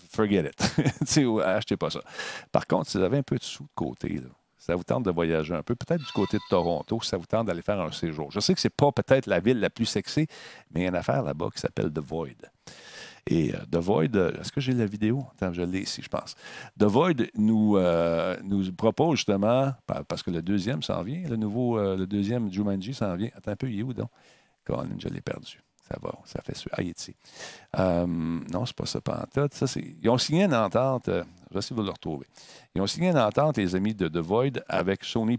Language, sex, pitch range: French, male, 95-120 Hz